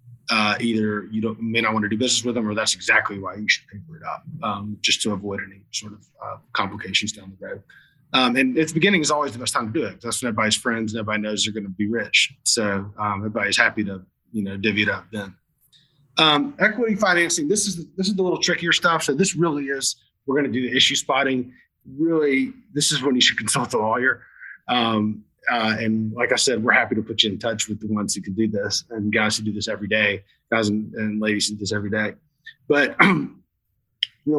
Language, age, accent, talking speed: English, 30-49, American, 235 wpm